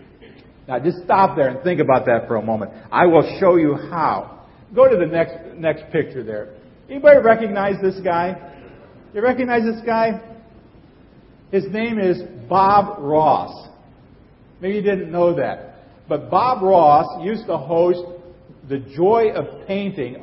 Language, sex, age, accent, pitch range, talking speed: English, male, 50-69, American, 155-210 Hz, 150 wpm